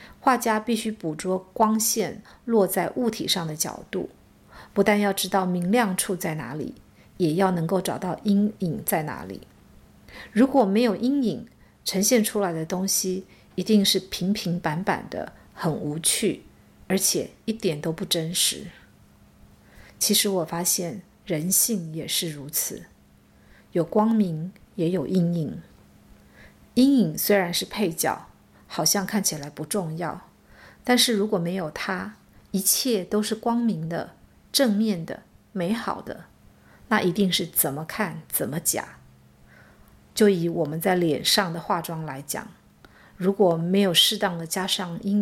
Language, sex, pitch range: Chinese, female, 170-215 Hz